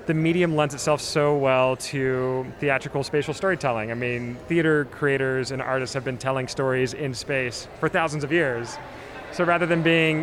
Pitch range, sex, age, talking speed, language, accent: 140-165 Hz, male, 30-49, 175 wpm, English, American